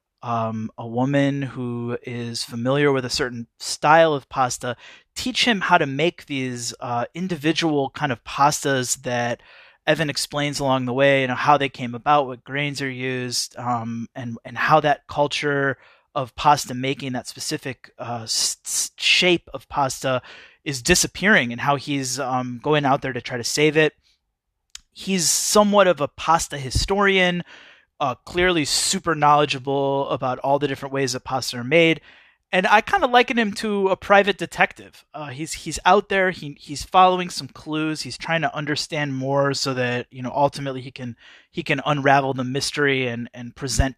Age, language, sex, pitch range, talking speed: 30-49, English, male, 125-160 Hz, 170 wpm